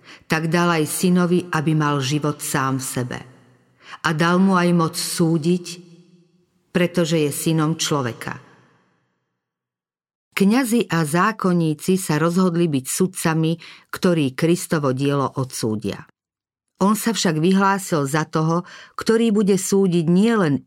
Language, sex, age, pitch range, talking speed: Slovak, female, 50-69, 155-185 Hz, 120 wpm